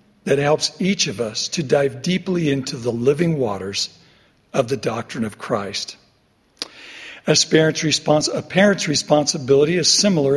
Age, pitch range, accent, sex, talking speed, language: 60-79, 120-165 Hz, American, male, 135 wpm, English